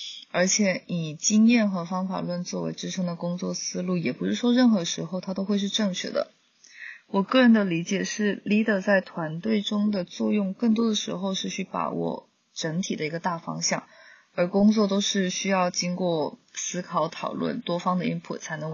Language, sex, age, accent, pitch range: Chinese, female, 20-39, native, 170-210 Hz